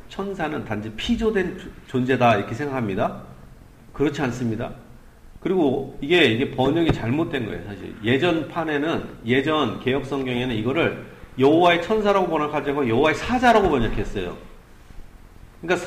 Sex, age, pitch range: male, 40-59, 145-215 Hz